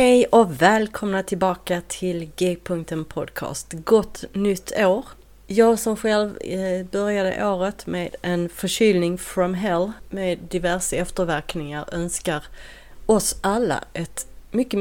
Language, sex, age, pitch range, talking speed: Swedish, female, 30-49, 160-210 Hz, 110 wpm